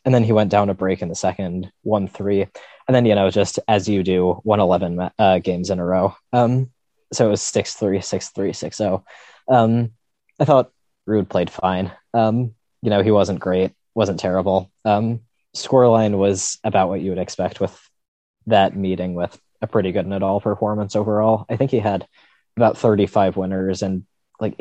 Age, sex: 20-39, male